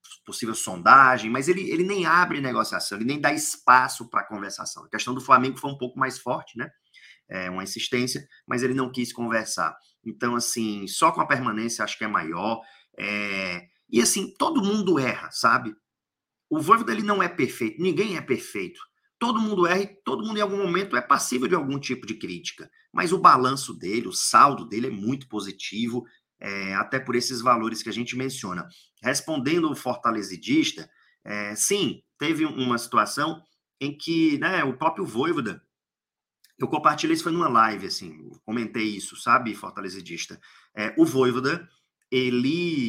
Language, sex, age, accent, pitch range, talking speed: Portuguese, male, 30-49, Brazilian, 115-170 Hz, 170 wpm